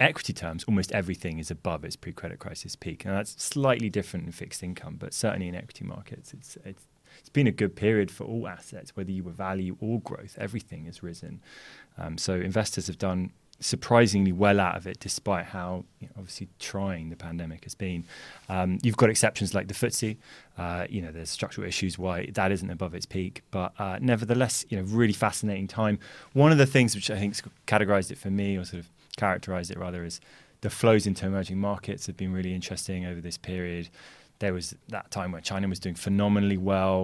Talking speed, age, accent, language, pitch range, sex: 205 wpm, 20-39, British, English, 90-105 Hz, male